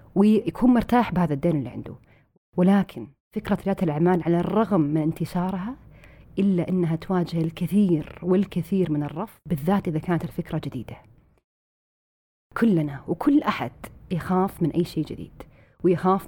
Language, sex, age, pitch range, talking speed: Arabic, female, 30-49, 155-195 Hz, 130 wpm